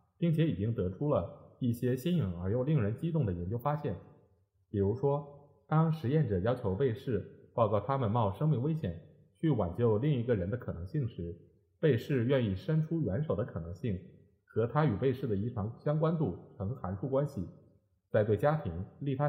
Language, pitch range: Chinese, 100-145 Hz